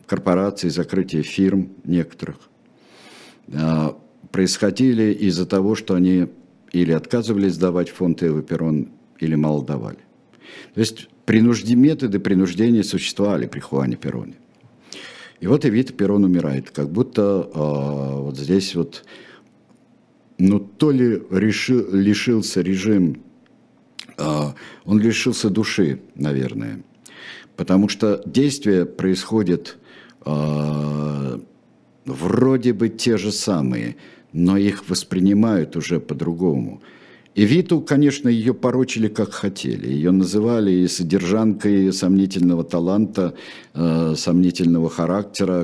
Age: 60-79